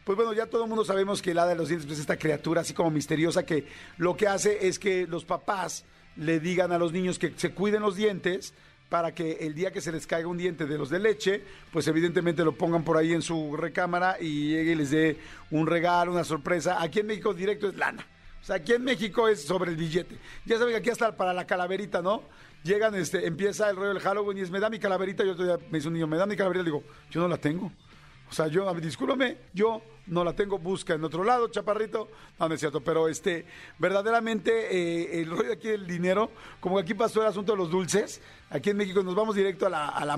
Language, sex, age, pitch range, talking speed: Spanish, male, 50-69, 165-200 Hz, 250 wpm